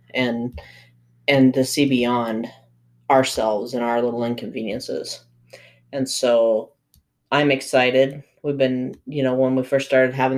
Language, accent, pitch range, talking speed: English, American, 125-145 Hz, 135 wpm